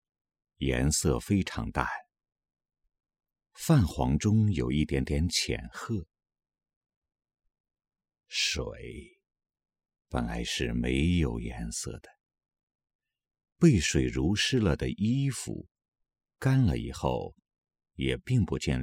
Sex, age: male, 50-69